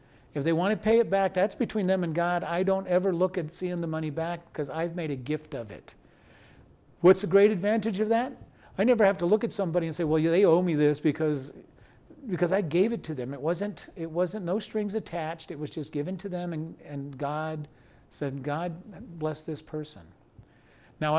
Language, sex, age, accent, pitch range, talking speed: English, male, 50-69, American, 145-175 Hz, 220 wpm